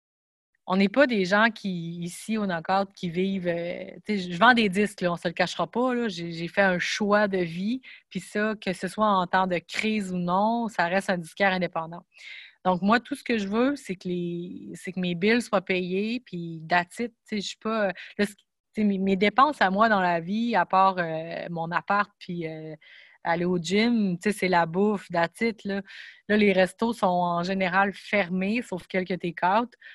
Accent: Canadian